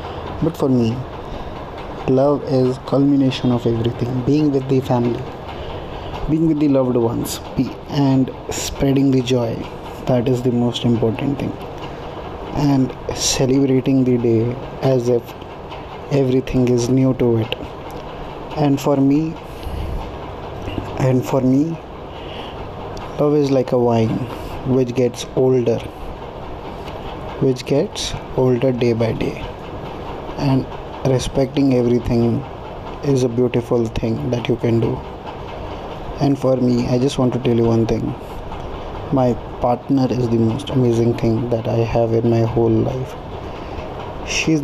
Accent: Indian